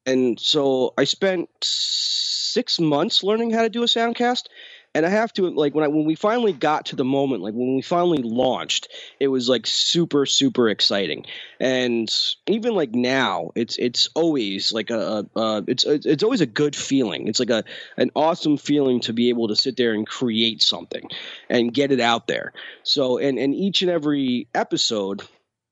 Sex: male